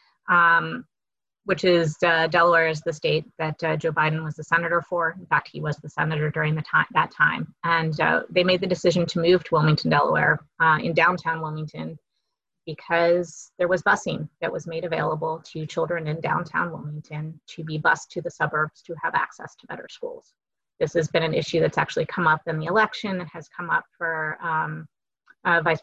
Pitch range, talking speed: 155-180 Hz, 200 wpm